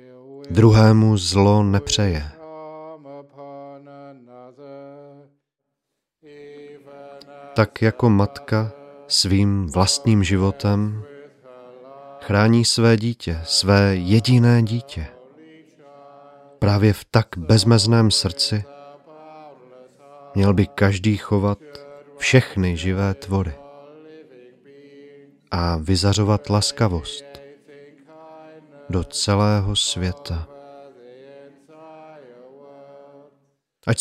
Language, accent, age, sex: Czech, native, 40-59, male